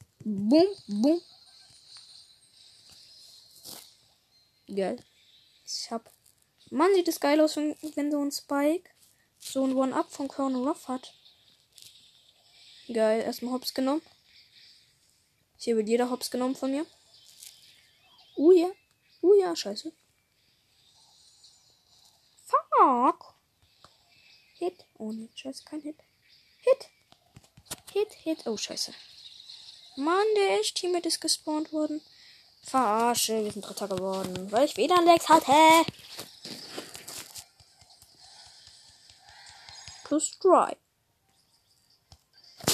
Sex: female